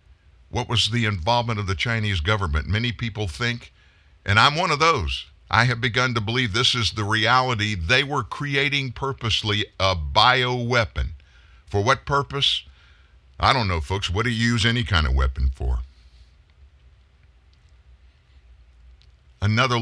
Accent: American